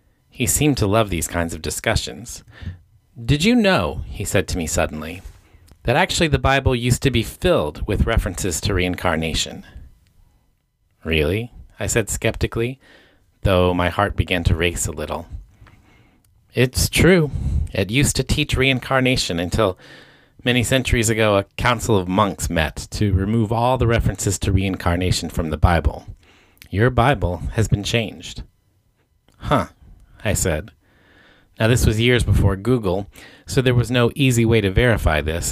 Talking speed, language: 150 wpm, English